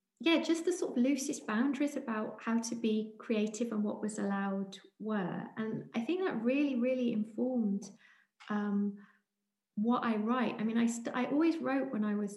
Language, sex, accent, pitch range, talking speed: English, female, British, 190-225 Hz, 185 wpm